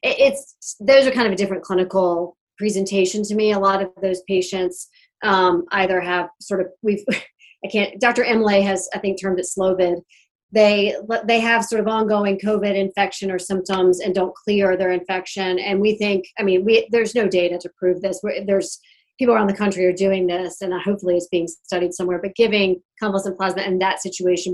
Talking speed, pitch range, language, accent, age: 195 wpm, 185-215 Hz, English, American, 30-49